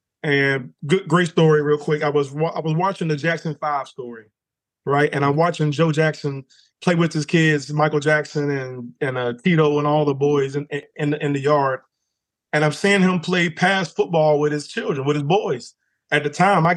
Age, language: 20-39, English